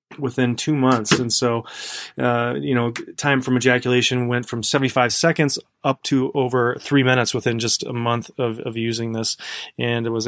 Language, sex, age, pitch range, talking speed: English, male, 30-49, 120-140 Hz, 180 wpm